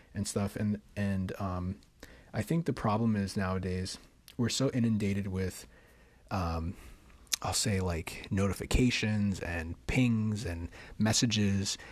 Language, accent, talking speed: English, American, 120 wpm